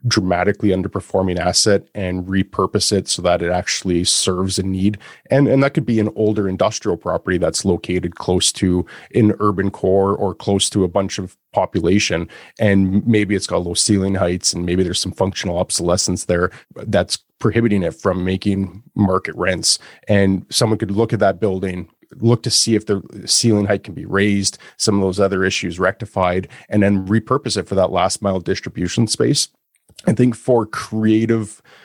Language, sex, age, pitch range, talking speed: English, male, 30-49, 95-110 Hz, 175 wpm